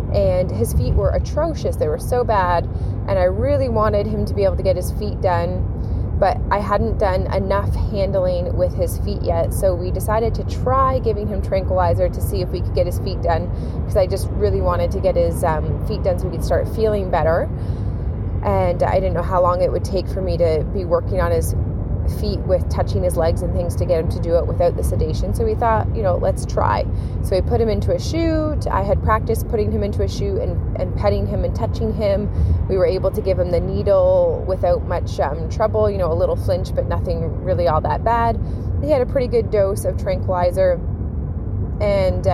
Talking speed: 225 wpm